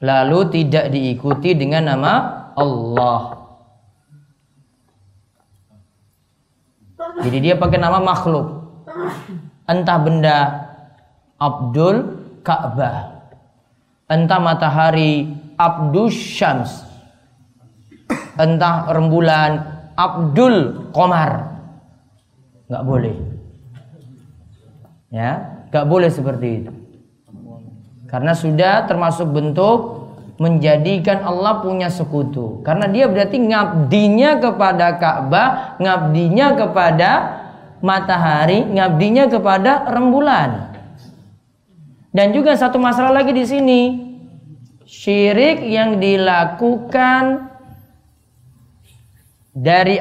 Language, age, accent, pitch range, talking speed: Indonesian, 30-49, native, 130-195 Hz, 75 wpm